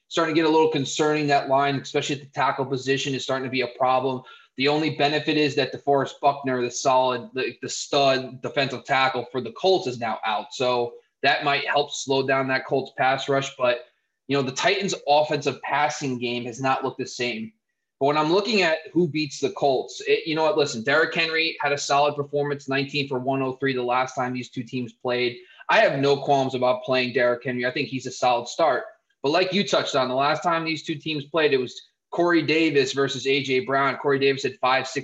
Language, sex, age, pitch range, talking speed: English, male, 20-39, 130-155 Hz, 220 wpm